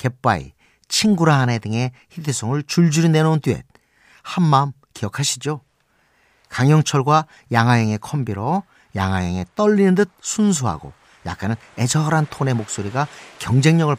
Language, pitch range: Korean, 115-165 Hz